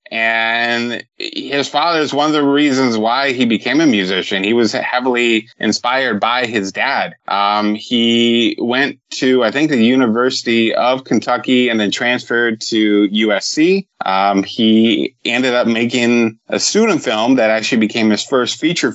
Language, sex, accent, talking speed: English, male, American, 155 wpm